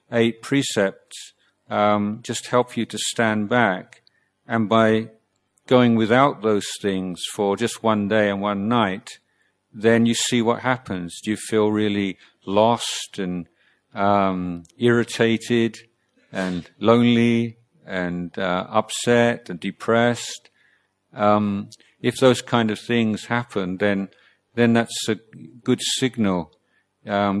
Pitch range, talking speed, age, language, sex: 95-115 Hz, 125 wpm, 50-69, English, male